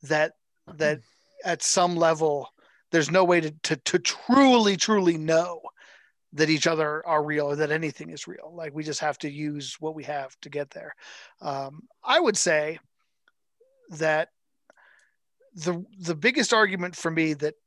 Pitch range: 150-180 Hz